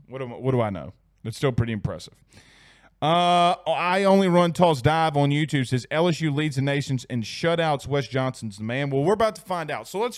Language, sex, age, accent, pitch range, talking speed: English, male, 30-49, American, 140-165 Hz, 220 wpm